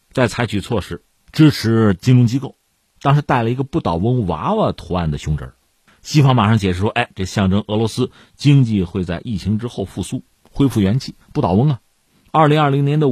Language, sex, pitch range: Chinese, male, 100-145 Hz